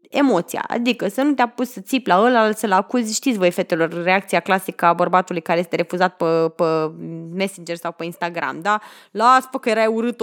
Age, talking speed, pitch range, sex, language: 20-39, 200 wpm, 195-265 Hz, female, Romanian